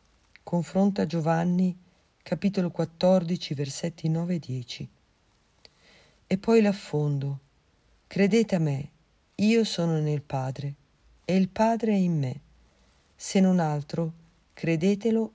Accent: native